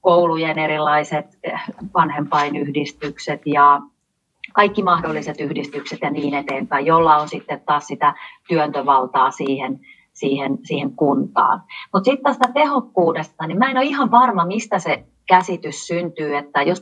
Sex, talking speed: female, 125 wpm